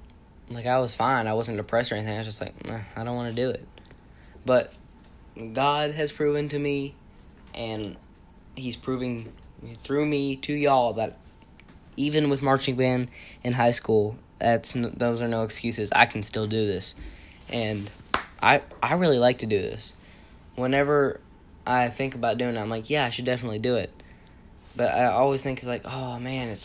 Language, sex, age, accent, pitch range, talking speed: English, male, 10-29, American, 100-125 Hz, 180 wpm